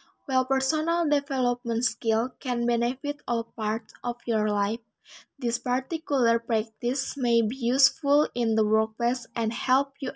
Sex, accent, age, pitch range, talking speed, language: female, Indonesian, 10-29, 225-270 Hz, 135 wpm, English